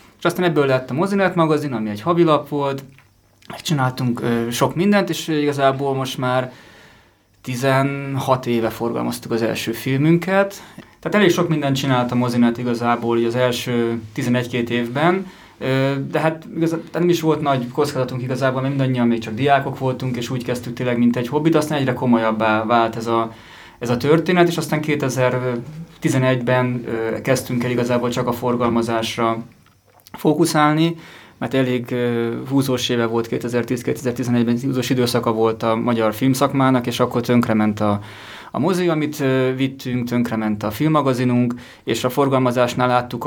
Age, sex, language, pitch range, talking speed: 20-39, male, Hungarian, 115-140 Hz, 150 wpm